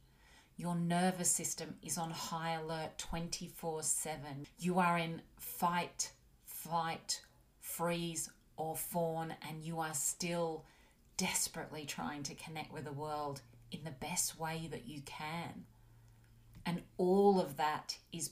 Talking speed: 130 wpm